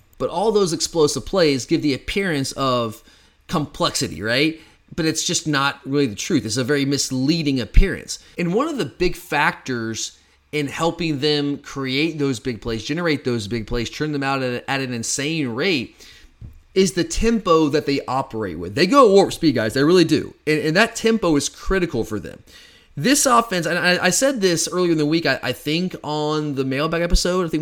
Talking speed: 190 wpm